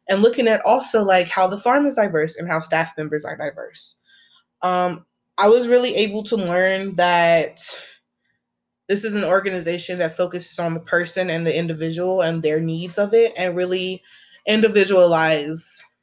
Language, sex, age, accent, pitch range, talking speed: English, female, 20-39, American, 170-205 Hz, 165 wpm